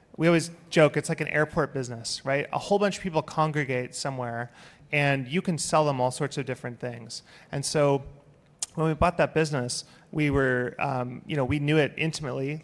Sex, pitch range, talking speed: male, 130-155 Hz, 200 wpm